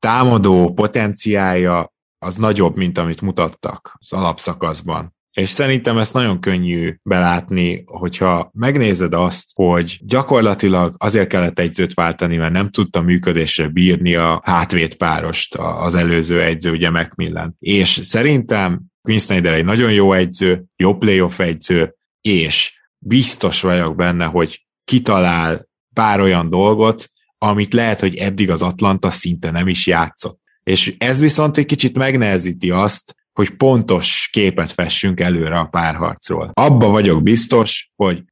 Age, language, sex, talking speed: 20-39, Hungarian, male, 130 wpm